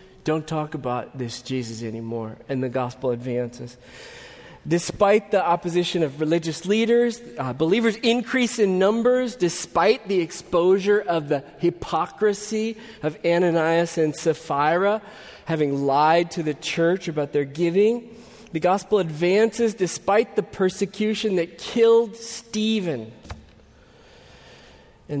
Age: 40-59